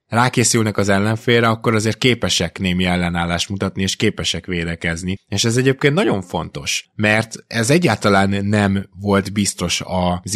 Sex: male